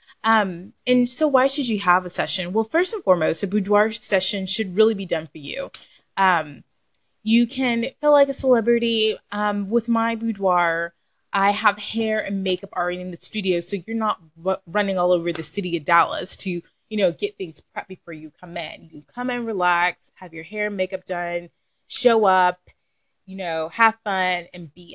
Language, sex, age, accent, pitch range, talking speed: English, female, 20-39, American, 180-230 Hz, 190 wpm